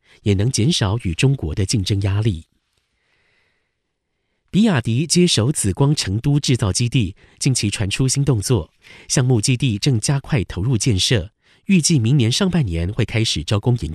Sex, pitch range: male, 100-140 Hz